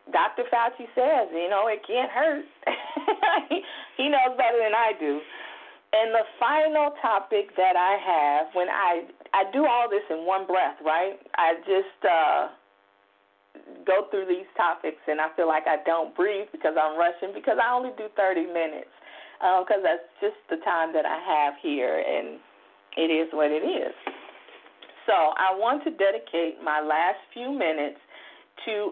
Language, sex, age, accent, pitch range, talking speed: English, female, 40-59, American, 155-225 Hz, 165 wpm